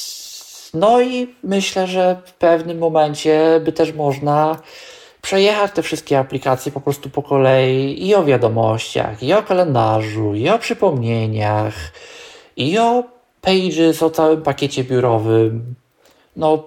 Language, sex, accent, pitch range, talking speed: Polish, male, native, 125-160 Hz, 125 wpm